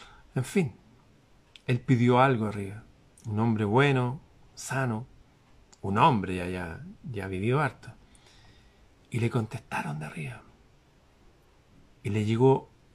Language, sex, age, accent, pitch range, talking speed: Spanish, male, 40-59, Argentinian, 105-125 Hz, 115 wpm